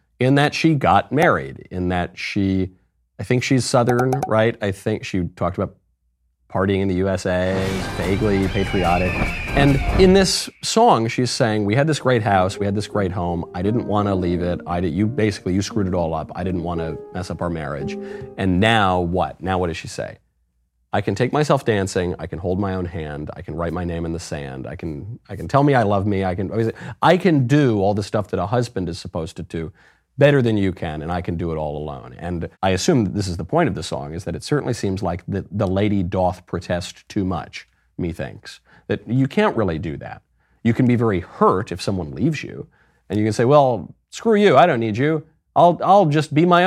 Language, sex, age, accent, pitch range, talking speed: English, male, 30-49, American, 90-125 Hz, 235 wpm